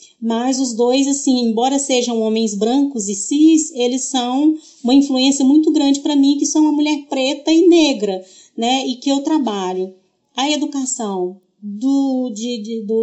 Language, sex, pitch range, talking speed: Portuguese, female, 225-295 Hz, 165 wpm